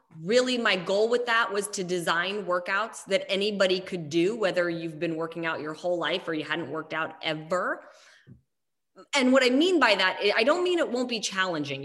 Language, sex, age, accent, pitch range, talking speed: English, female, 20-39, American, 165-205 Hz, 205 wpm